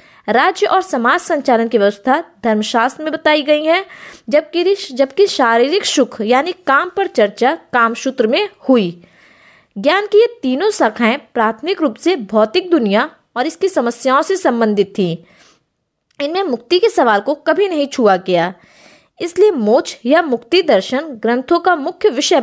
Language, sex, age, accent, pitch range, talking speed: Hindi, female, 20-39, native, 230-355 Hz, 95 wpm